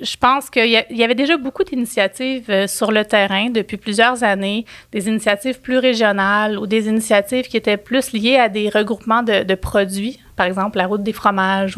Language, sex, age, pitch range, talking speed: French, female, 30-49, 210-245 Hz, 200 wpm